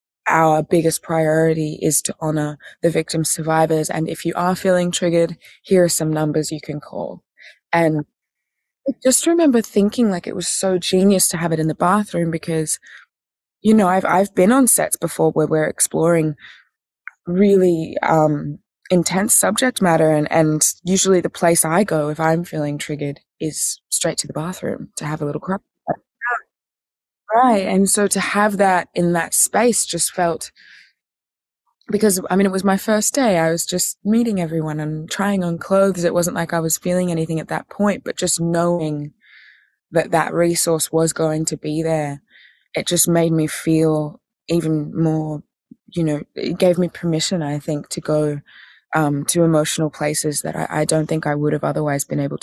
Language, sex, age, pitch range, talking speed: English, female, 20-39, 155-185 Hz, 180 wpm